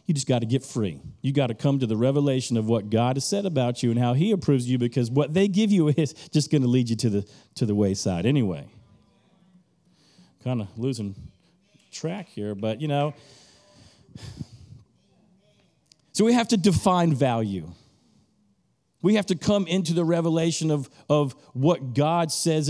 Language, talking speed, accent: English, 180 wpm, American